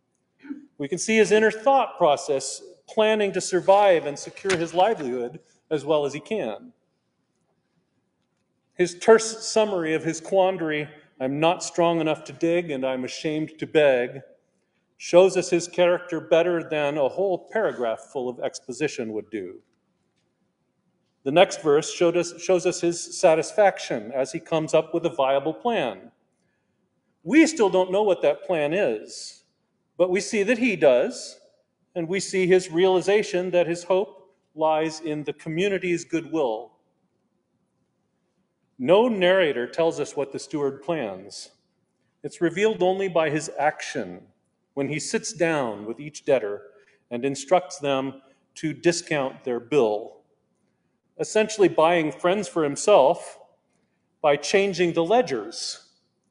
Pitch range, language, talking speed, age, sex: 150-195 Hz, English, 140 wpm, 40-59, male